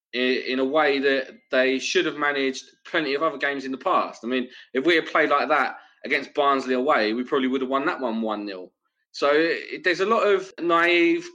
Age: 20-39